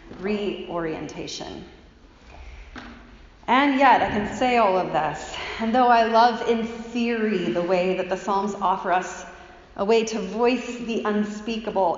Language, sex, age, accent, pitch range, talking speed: English, female, 30-49, American, 185-255 Hz, 140 wpm